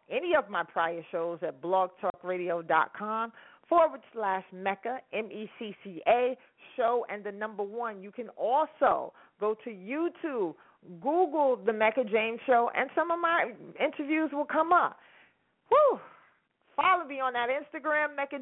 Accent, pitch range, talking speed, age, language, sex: American, 210-275 Hz, 135 wpm, 40-59, English, female